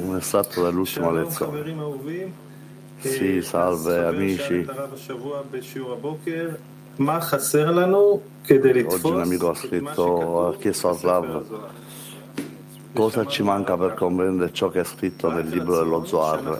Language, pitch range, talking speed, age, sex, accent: Italian, 95-130 Hz, 105 wpm, 50-69, male, native